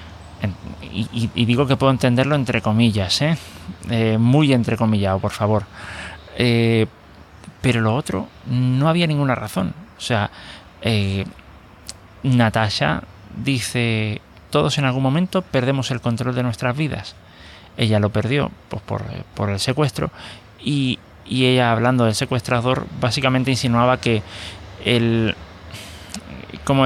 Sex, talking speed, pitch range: male, 125 wpm, 100-130 Hz